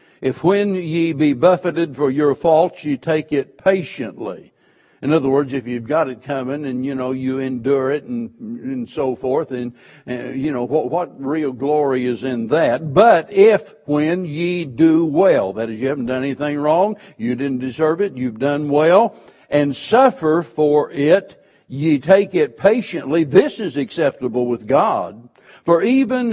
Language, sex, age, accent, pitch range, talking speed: English, male, 60-79, American, 140-180 Hz, 175 wpm